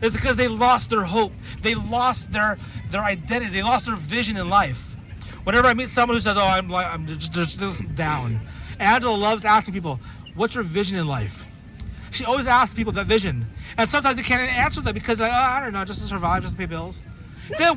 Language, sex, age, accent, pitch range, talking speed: English, male, 30-49, American, 165-250 Hz, 220 wpm